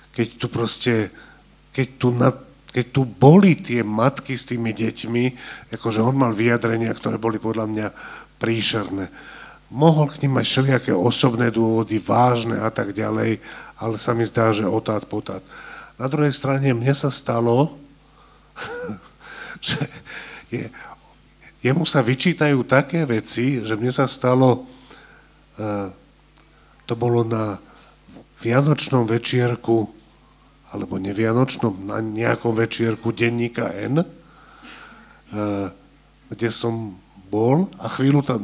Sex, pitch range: male, 115-140 Hz